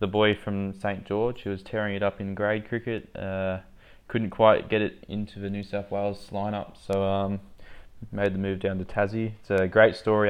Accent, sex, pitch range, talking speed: Australian, male, 95-105 Hz, 210 wpm